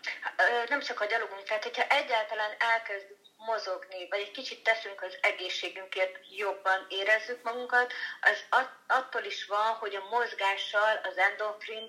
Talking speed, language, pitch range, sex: 140 wpm, Hungarian, 185-225 Hz, female